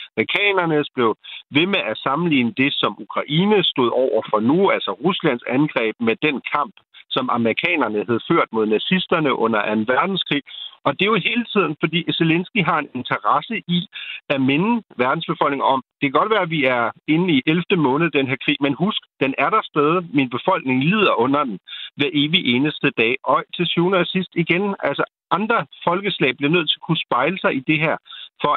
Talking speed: 195 wpm